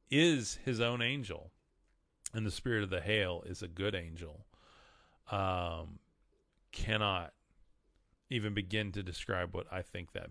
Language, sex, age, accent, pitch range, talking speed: English, male, 30-49, American, 90-105 Hz, 140 wpm